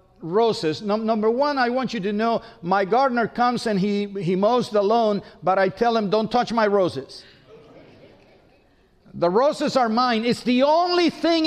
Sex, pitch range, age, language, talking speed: male, 210-265 Hz, 50-69, English, 175 wpm